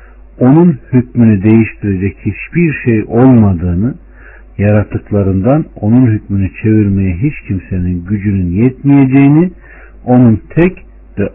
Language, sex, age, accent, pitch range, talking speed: Turkish, male, 60-79, native, 100-125 Hz, 90 wpm